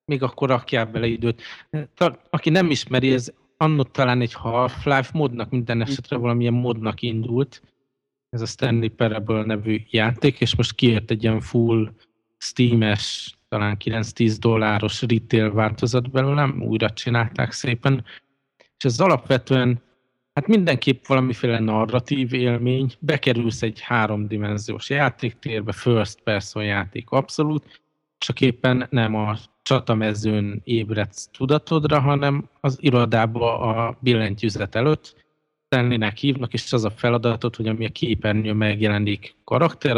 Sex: male